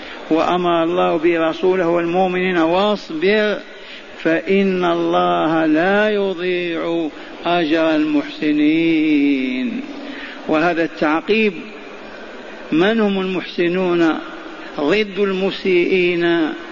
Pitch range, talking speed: 175-200 Hz, 60 wpm